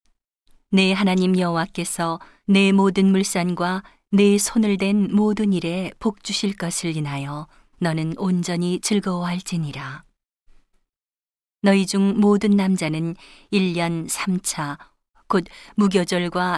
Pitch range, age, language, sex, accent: 165-200 Hz, 40-59, Korean, female, native